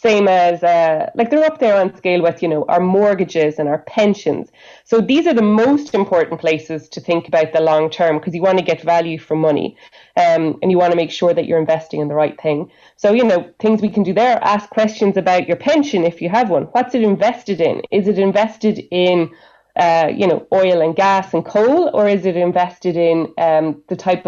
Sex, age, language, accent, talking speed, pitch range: female, 30-49, English, Irish, 225 wpm, 165-210 Hz